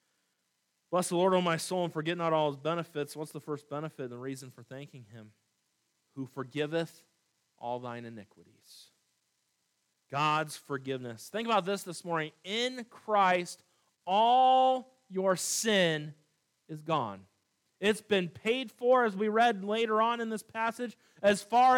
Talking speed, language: 150 wpm, English